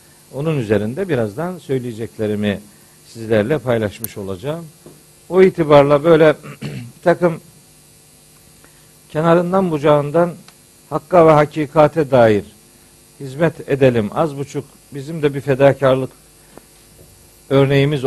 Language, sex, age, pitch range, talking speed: Turkish, male, 60-79, 120-170 Hz, 85 wpm